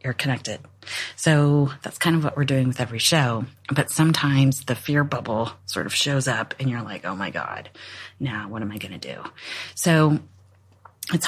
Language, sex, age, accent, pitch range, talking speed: English, female, 30-49, American, 125-150 Hz, 185 wpm